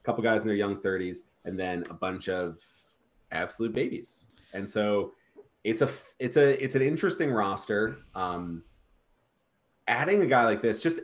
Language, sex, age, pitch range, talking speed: English, male, 30-49, 105-140 Hz, 165 wpm